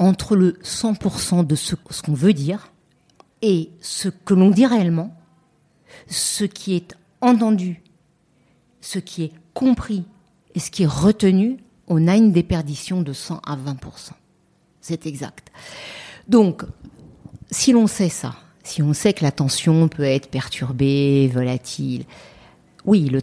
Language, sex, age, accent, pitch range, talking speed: French, female, 50-69, French, 150-200 Hz, 140 wpm